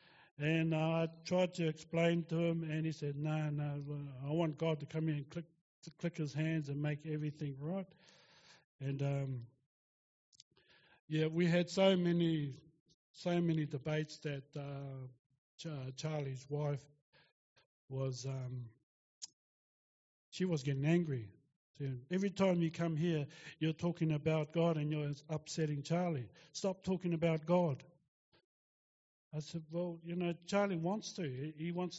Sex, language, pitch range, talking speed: male, English, 140-170 Hz, 140 wpm